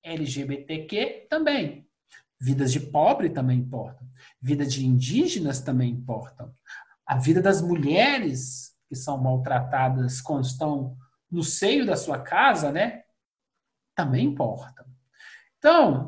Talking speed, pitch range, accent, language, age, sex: 110 wpm, 140-215 Hz, Brazilian, Portuguese, 50-69, male